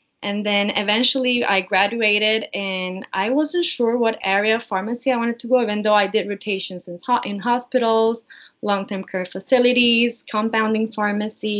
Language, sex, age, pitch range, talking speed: English, female, 20-39, 185-230 Hz, 155 wpm